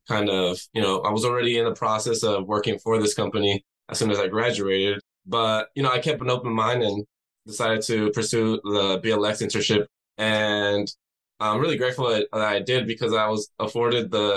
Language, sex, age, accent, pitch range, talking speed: English, male, 10-29, American, 105-120 Hz, 195 wpm